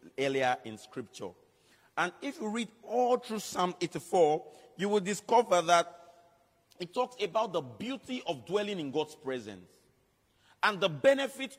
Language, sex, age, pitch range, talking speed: English, male, 40-59, 150-210 Hz, 145 wpm